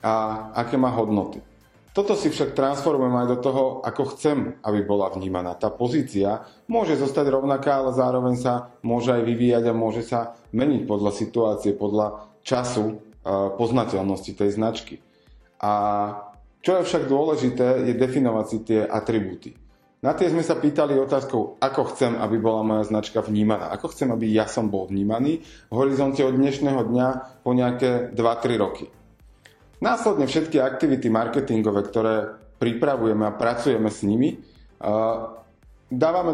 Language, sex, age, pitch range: Slovak, male, 30-49, 110-135 Hz